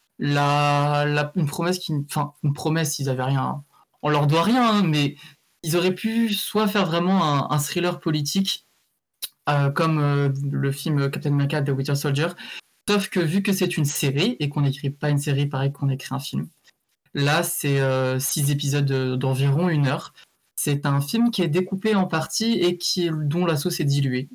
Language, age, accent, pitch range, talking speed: French, 20-39, French, 140-170 Hz, 190 wpm